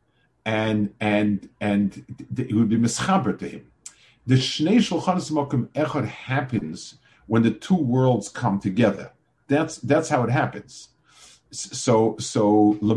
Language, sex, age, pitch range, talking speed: English, male, 50-69, 105-135 Hz, 125 wpm